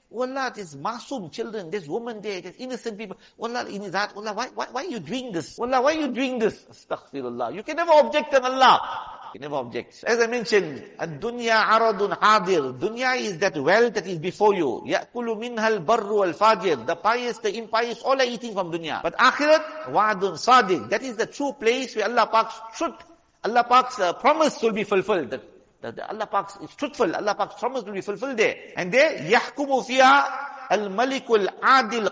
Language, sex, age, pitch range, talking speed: English, male, 50-69, 195-255 Hz, 175 wpm